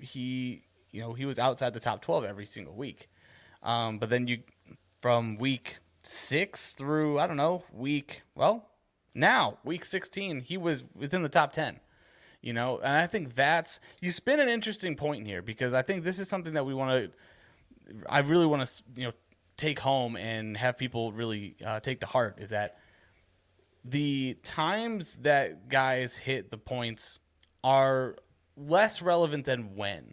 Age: 20-39